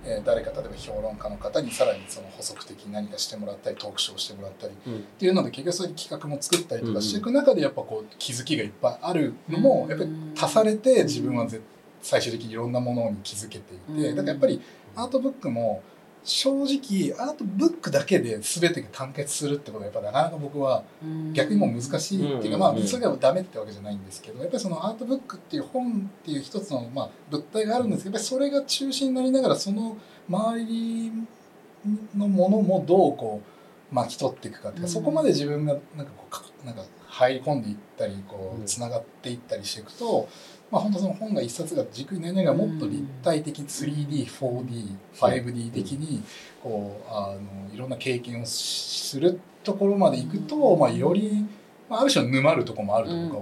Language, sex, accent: Japanese, male, native